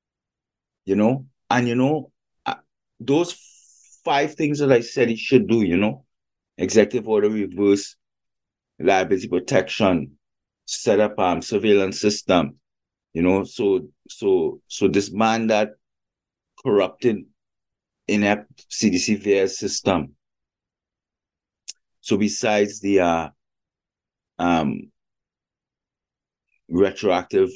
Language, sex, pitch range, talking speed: English, male, 95-120 Hz, 100 wpm